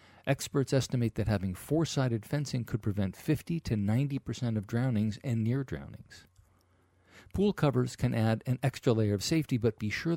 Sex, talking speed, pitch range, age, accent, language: male, 165 wpm, 95-125 Hz, 50-69, American, English